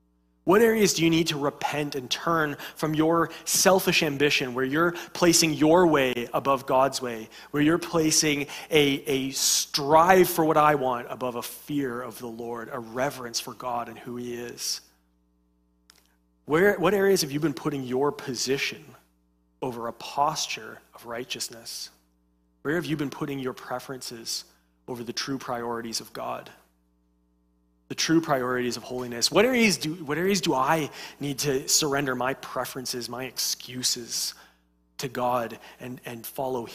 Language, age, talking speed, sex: English, 30-49, 155 wpm, male